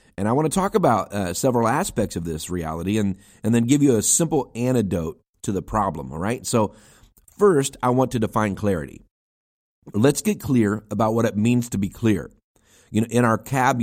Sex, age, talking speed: male, 40-59, 205 wpm